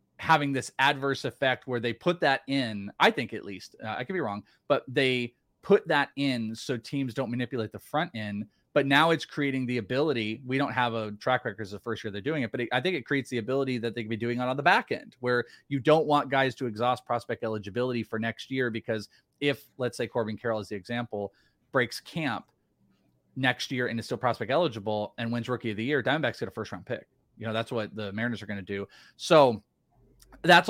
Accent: American